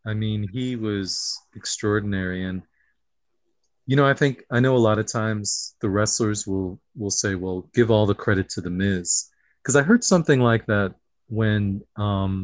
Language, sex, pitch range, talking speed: English, male, 95-120 Hz, 180 wpm